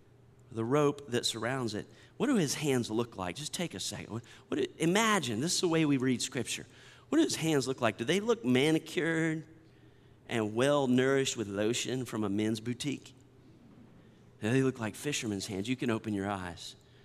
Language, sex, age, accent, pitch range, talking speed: English, male, 40-59, American, 120-150 Hz, 190 wpm